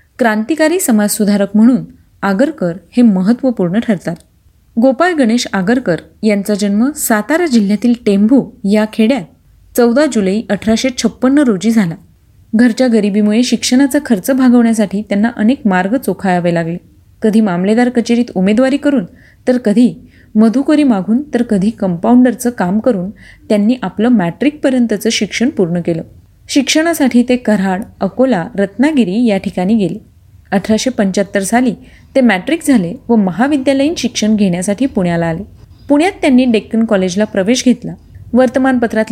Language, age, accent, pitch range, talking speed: Marathi, 30-49, native, 200-250 Hz, 120 wpm